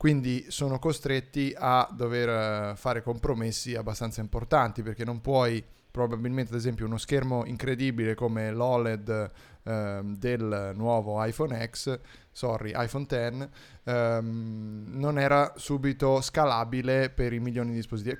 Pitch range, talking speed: 115-135 Hz, 125 wpm